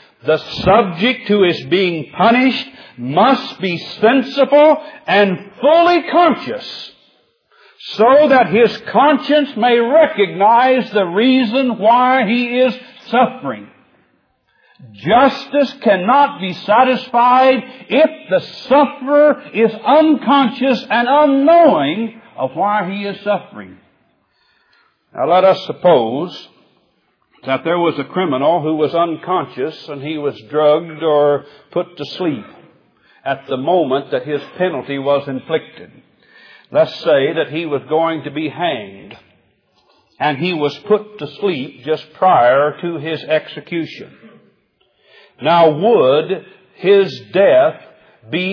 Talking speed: 115 wpm